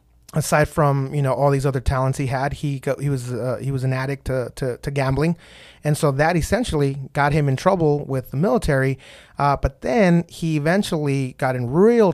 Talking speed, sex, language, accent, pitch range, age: 210 wpm, male, English, American, 130-160 Hz, 30-49